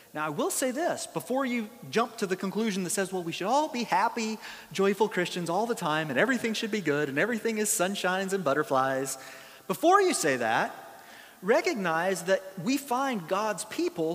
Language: English